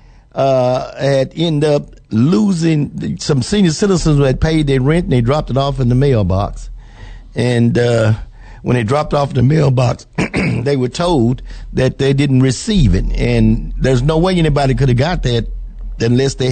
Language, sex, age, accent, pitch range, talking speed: English, male, 50-69, American, 125-150 Hz, 180 wpm